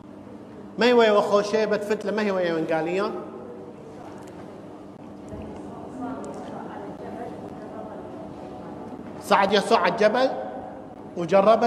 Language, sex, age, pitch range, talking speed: English, male, 50-69, 180-275 Hz, 70 wpm